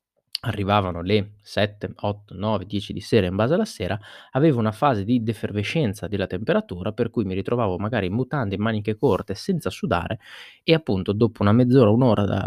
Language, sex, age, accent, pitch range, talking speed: Italian, male, 20-39, native, 95-125 Hz, 190 wpm